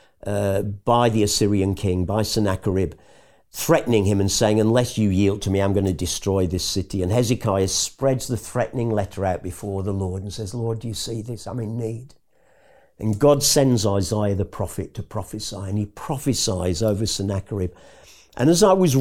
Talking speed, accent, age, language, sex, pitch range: 185 wpm, British, 50-69, English, male, 95-125 Hz